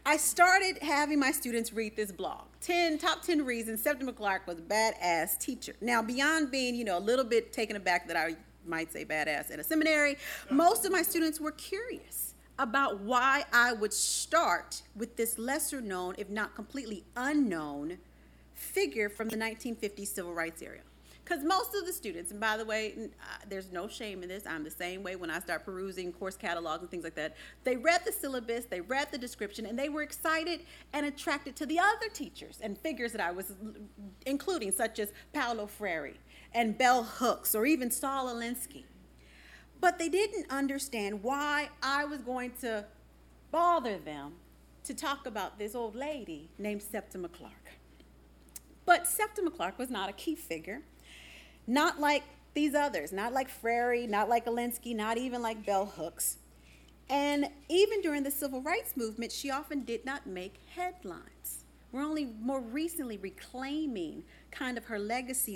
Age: 40-59